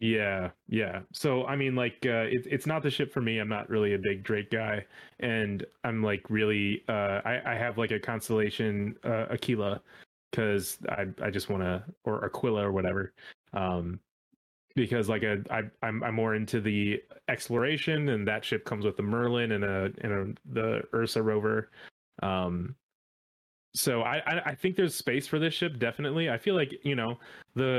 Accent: American